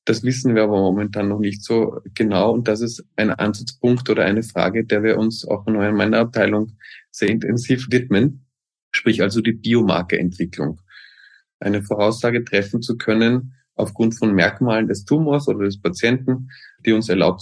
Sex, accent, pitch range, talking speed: male, German, 100-120 Hz, 165 wpm